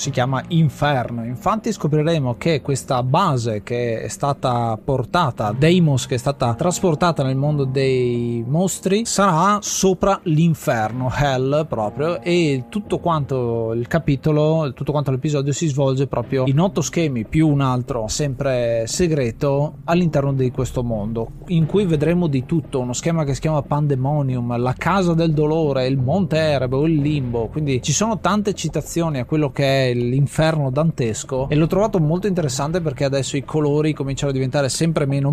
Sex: male